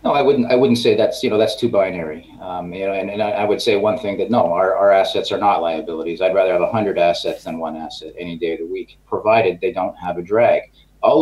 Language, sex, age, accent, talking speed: English, male, 40-59, American, 280 wpm